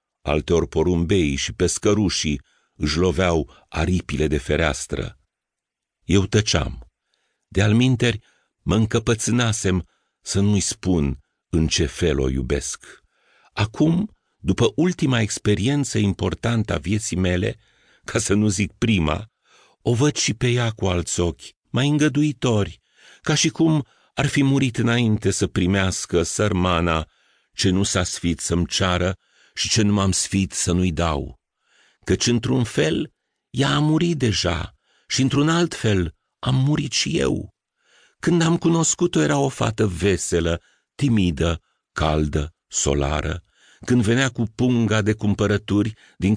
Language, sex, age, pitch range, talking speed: Romanian, male, 50-69, 90-125 Hz, 130 wpm